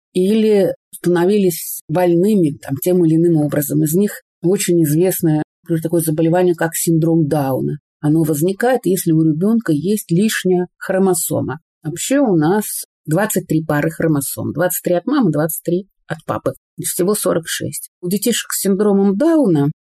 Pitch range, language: 165-210 Hz, Russian